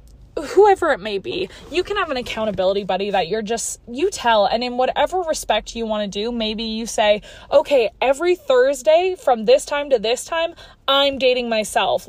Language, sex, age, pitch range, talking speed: English, female, 20-39, 225-285 Hz, 190 wpm